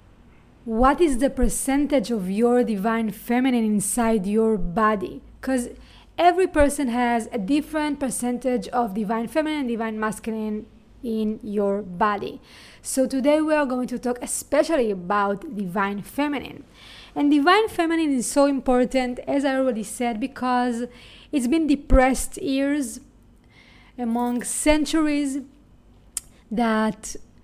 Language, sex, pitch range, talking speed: English, female, 225-280 Hz, 120 wpm